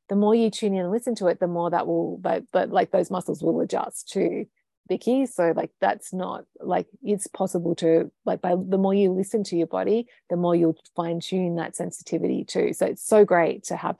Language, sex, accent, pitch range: English, female, Australian, 175-215 Hz